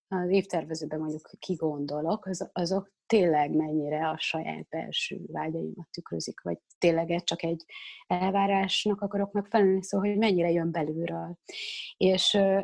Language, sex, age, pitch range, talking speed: Hungarian, female, 30-49, 165-200 Hz, 125 wpm